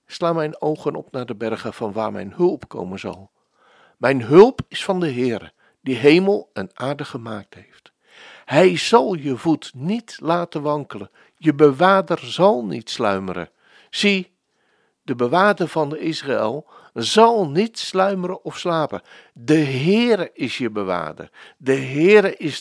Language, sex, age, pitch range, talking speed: Dutch, male, 60-79, 130-190 Hz, 150 wpm